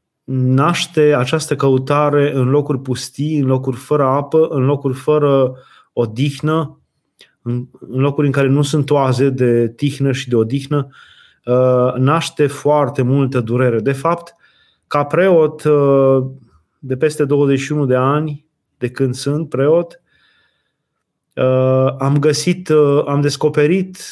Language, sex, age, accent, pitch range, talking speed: Romanian, male, 20-39, native, 135-155 Hz, 115 wpm